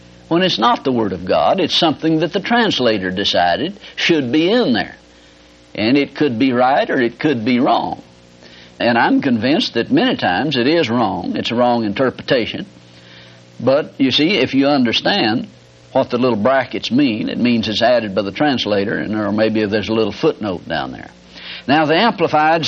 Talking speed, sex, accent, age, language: 185 wpm, male, American, 60-79, English